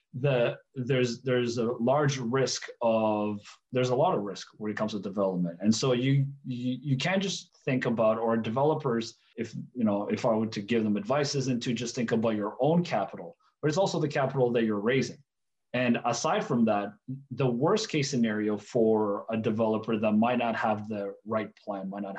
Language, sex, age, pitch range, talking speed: English, male, 30-49, 100-125 Hz, 200 wpm